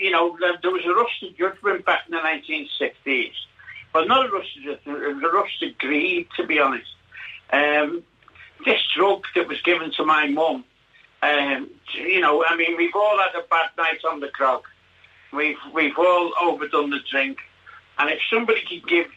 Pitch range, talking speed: 145-185 Hz, 170 wpm